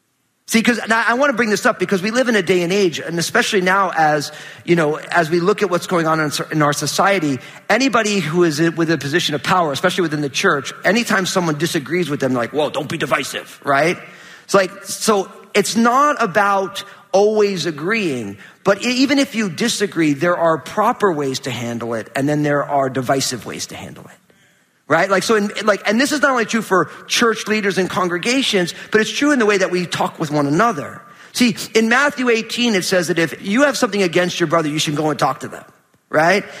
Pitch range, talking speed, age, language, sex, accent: 165-220 Hz, 220 wpm, 40-59, English, male, American